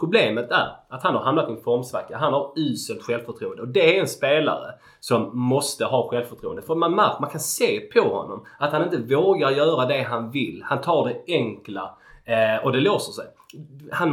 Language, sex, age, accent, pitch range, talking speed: Swedish, male, 30-49, native, 120-155 Hz, 205 wpm